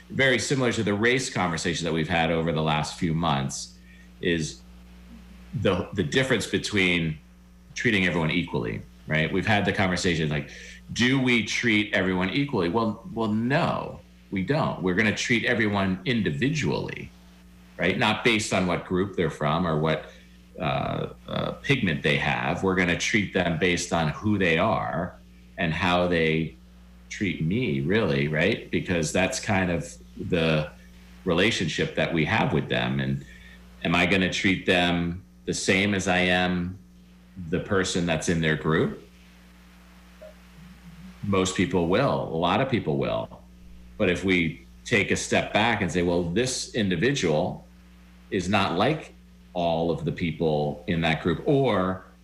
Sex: male